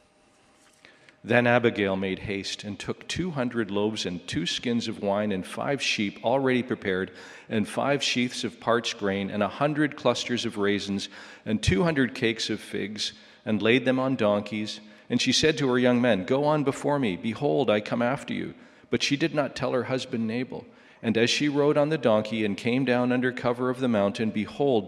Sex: male